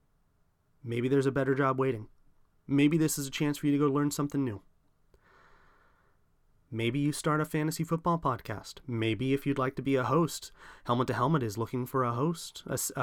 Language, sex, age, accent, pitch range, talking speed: English, male, 30-49, American, 115-160 Hz, 190 wpm